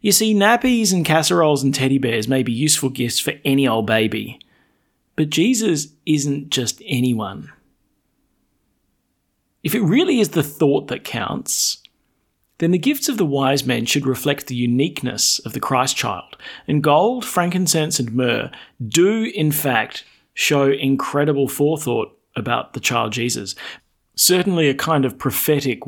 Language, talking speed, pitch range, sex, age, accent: English, 150 wpm, 120-160 Hz, male, 30-49, Australian